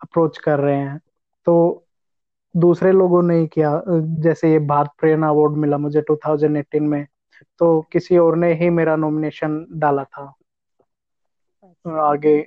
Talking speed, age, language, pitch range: 135 wpm, 20-39, Hindi, 155-170 Hz